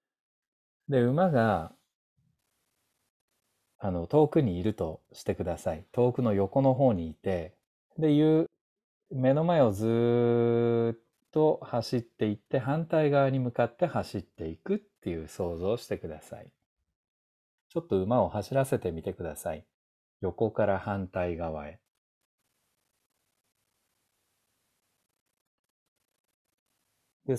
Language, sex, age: Japanese, male, 40-59